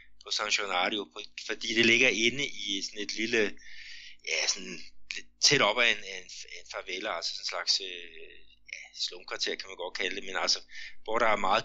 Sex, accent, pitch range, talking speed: male, native, 95-135 Hz, 185 wpm